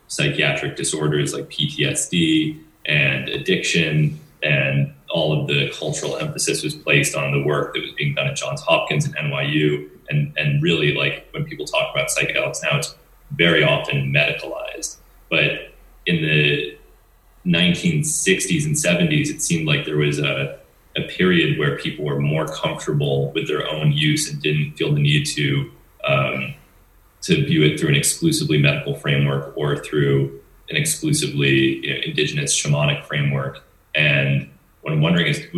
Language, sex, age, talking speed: English, male, 30-49, 155 wpm